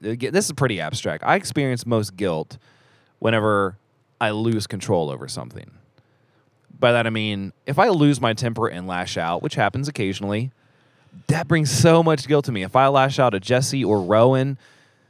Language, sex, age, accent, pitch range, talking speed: English, male, 20-39, American, 110-145 Hz, 175 wpm